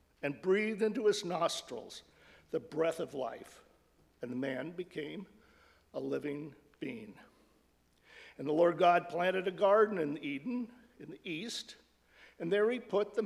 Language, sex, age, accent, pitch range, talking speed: English, male, 60-79, American, 155-230 Hz, 150 wpm